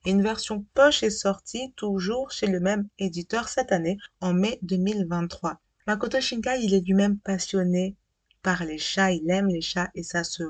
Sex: female